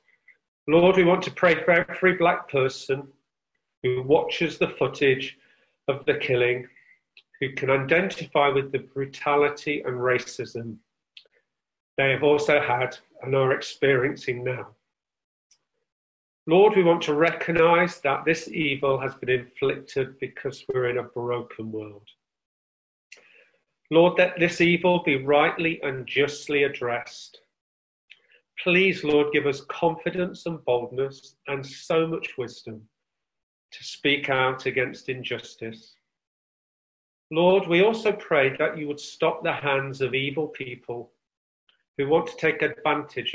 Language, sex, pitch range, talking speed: English, male, 125-165 Hz, 125 wpm